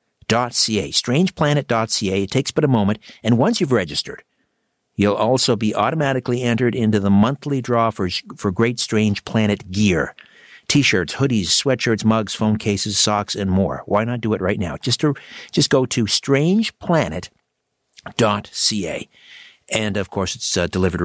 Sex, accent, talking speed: male, American, 155 wpm